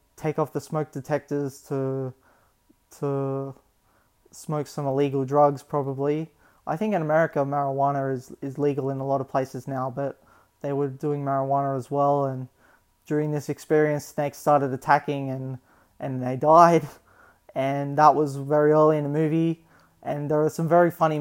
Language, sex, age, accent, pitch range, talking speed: English, male, 20-39, Australian, 140-150 Hz, 165 wpm